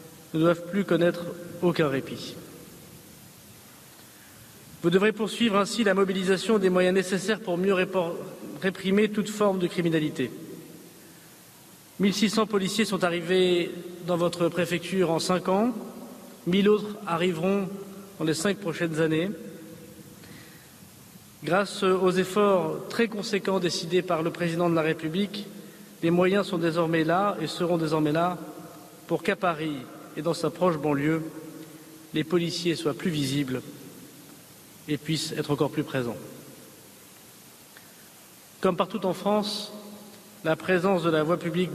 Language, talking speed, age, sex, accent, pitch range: French, 130 wpm, 40-59, male, French, 160-195 Hz